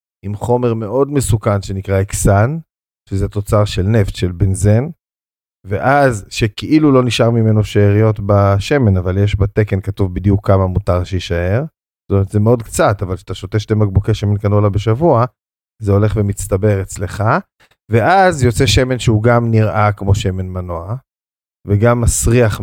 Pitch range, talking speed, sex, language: 95-115 Hz, 145 wpm, male, Hebrew